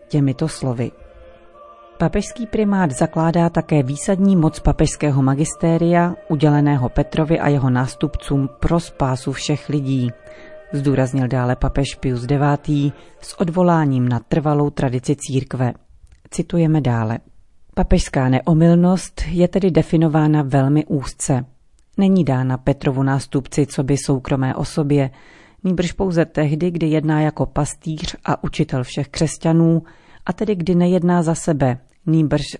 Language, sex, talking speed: Czech, female, 120 wpm